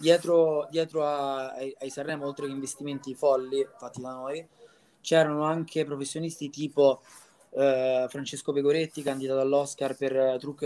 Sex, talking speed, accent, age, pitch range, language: male, 135 wpm, native, 20-39, 135-155 Hz, Italian